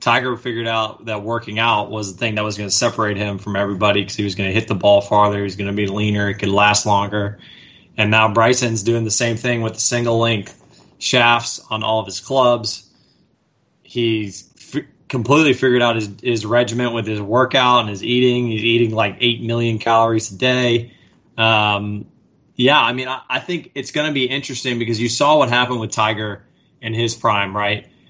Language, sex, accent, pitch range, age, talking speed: English, male, American, 105-120 Hz, 20-39, 205 wpm